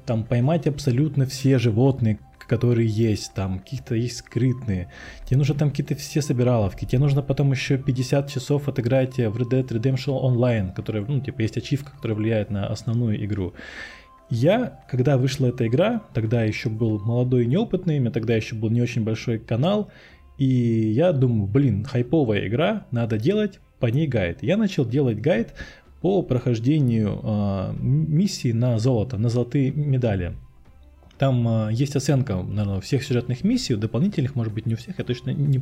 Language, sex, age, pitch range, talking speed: Russian, male, 20-39, 110-140 Hz, 165 wpm